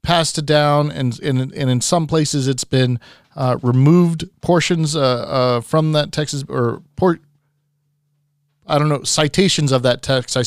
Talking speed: 170 wpm